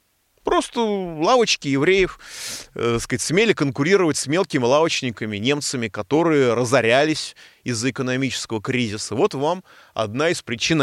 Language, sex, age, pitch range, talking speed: Russian, male, 30-49, 125-180 Hz, 110 wpm